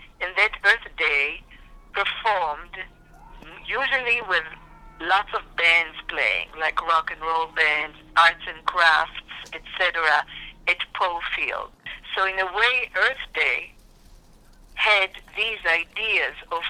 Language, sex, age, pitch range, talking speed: English, female, 50-69, 160-200 Hz, 120 wpm